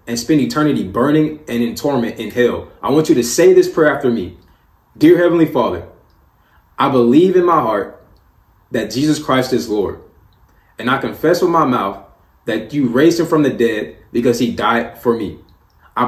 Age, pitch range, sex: 20-39, 120-170 Hz, male